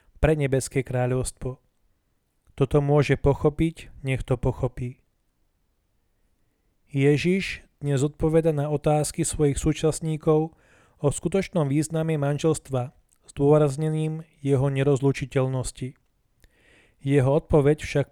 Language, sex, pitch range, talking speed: Slovak, male, 135-155 Hz, 90 wpm